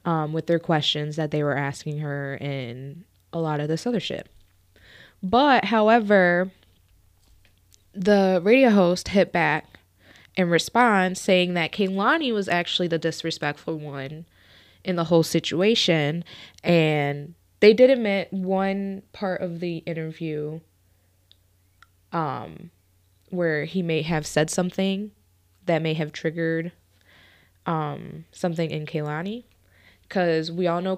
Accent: American